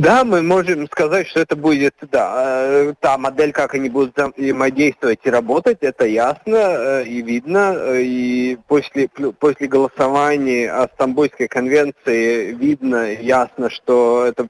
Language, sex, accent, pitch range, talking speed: Russian, male, native, 125-160 Hz, 130 wpm